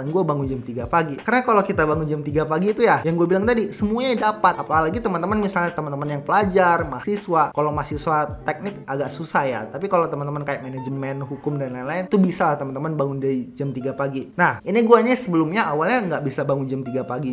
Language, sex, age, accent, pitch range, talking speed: Indonesian, male, 20-39, native, 140-180 Hz, 210 wpm